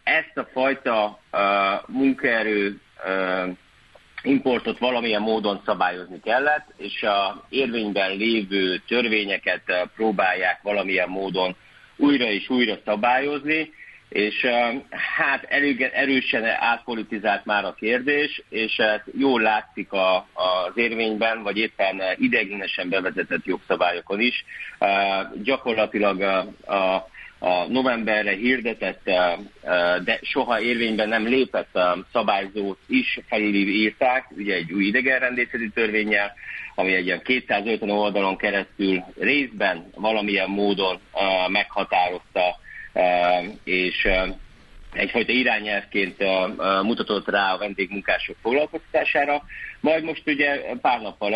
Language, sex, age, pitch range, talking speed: Hungarian, male, 50-69, 95-120 Hz, 105 wpm